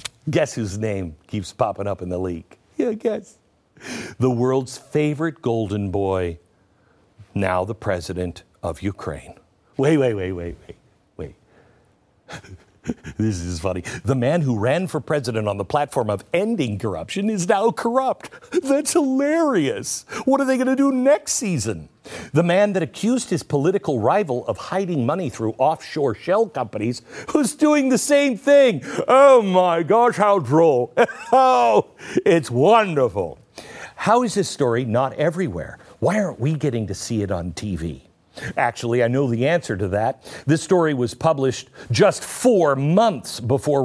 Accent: American